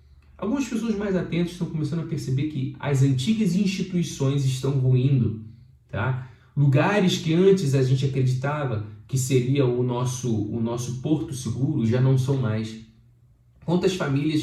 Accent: Brazilian